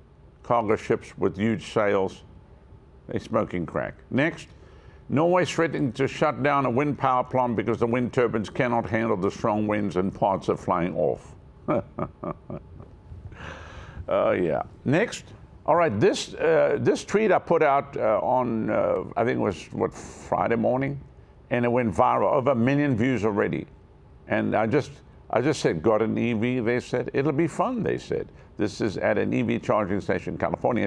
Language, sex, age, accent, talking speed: English, male, 60-79, American, 170 wpm